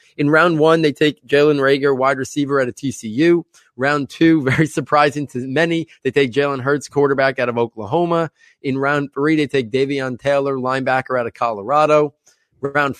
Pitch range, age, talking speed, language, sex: 130-150 Hz, 20-39, 175 wpm, English, male